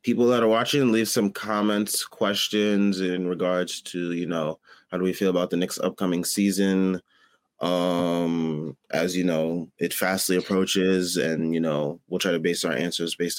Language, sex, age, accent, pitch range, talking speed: English, male, 20-39, American, 90-115 Hz, 175 wpm